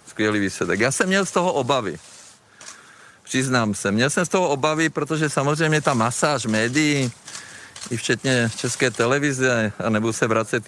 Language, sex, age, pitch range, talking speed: Czech, male, 50-69, 115-145 Hz, 145 wpm